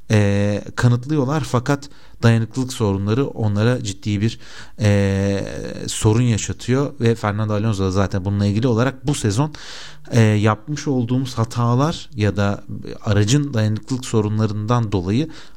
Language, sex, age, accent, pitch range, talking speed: Turkish, male, 40-59, native, 100-125 Hz, 120 wpm